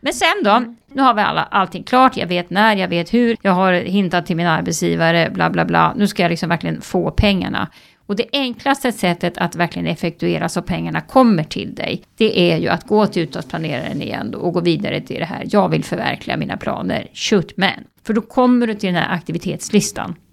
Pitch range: 170-225 Hz